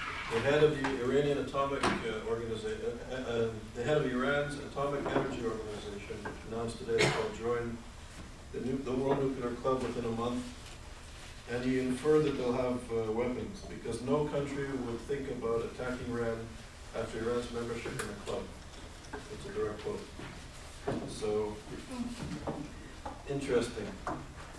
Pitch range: 110-140 Hz